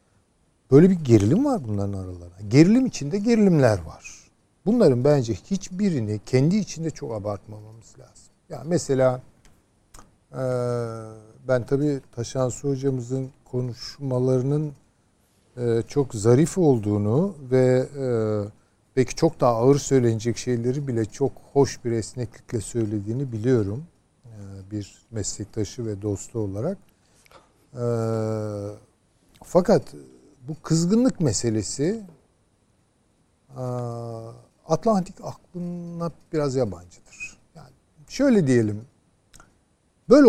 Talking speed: 90 wpm